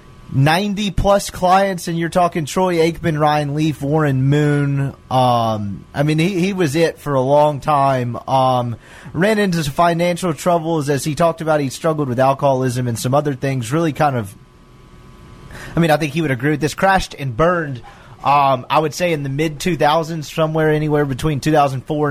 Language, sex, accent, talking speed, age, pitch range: English, male, American, 180 wpm, 30-49, 135-175 Hz